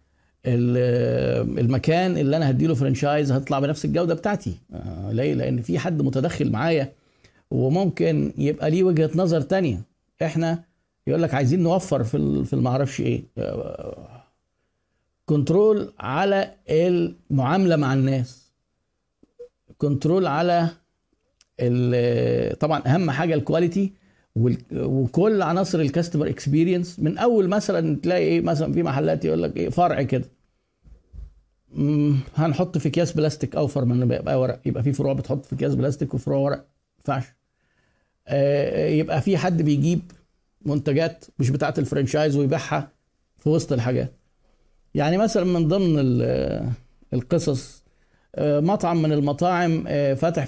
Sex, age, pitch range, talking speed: male, 50-69, 130-165 Hz, 120 wpm